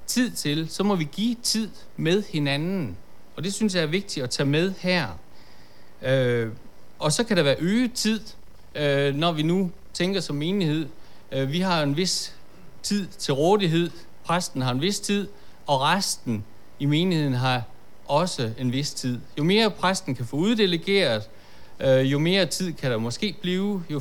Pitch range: 130-185 Hz